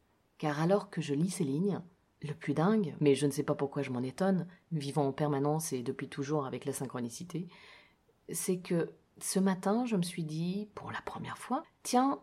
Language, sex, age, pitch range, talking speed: French, female, 30-49, 140-180 Hz, 200 wpm